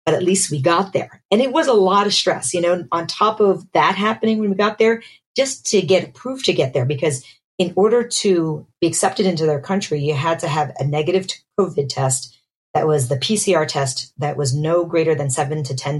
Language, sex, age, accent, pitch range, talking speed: English, female, 40-59, American, 145-185 Hz, 225 wpm